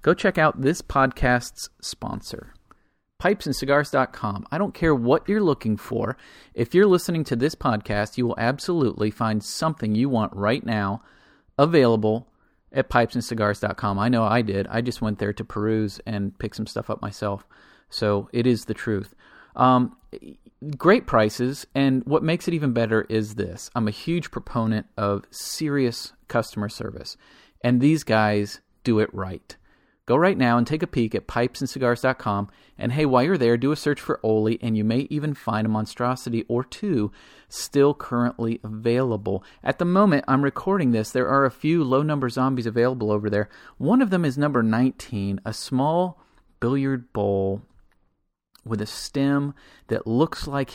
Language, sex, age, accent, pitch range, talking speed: English, male, 40-59, American, 110-135 Hz, 165 wpm